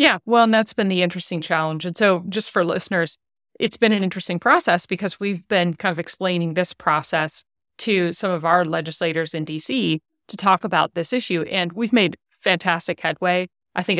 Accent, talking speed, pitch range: American, 195 wpm, 170-200 Hz